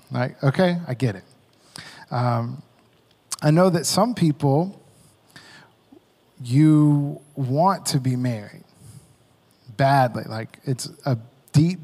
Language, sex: English, male